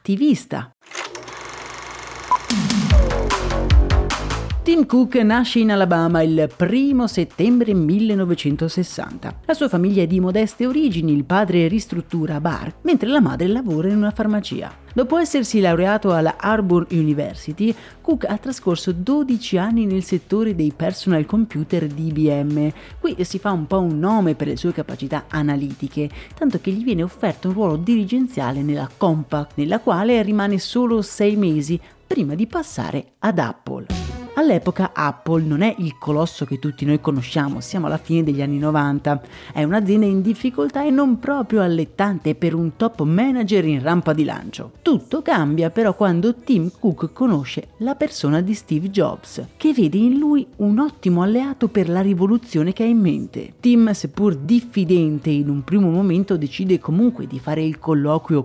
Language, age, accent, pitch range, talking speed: Italian, 40-59, native, 155-220 Hz, 155 wpm